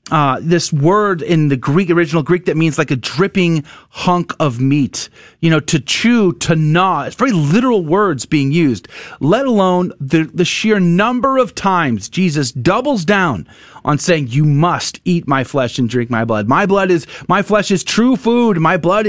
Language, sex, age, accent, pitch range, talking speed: English, male, 30-49, American, 140-190 Hz, 190 wpm